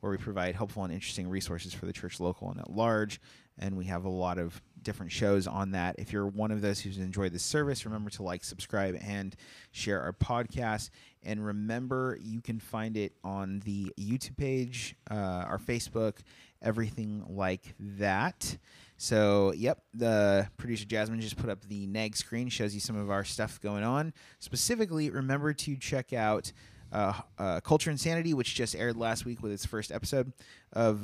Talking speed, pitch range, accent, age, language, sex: 185 wpm, 100-125 Hz, American, 30-49, English, male